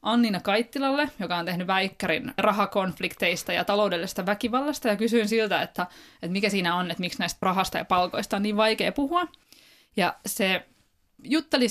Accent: native